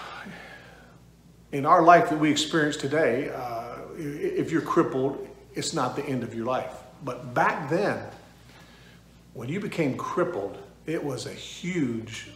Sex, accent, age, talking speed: male, American, 50-69, 140 wpm